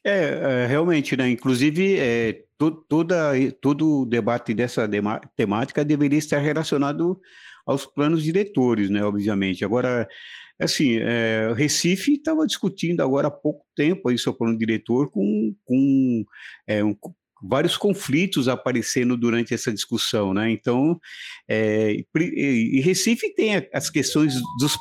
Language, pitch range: Portuguese, 115-150 Hz